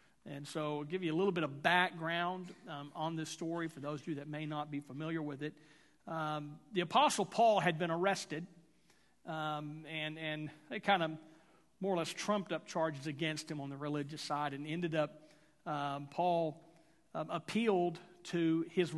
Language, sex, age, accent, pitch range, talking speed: English, male, 40-59, American, 150-180 Hz, 185 wpm